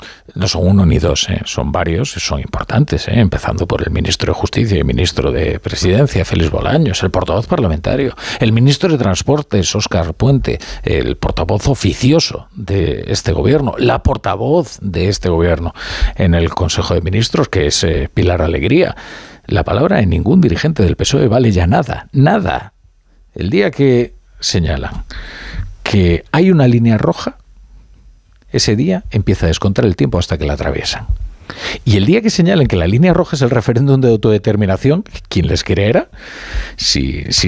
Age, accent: 50-69, Spanish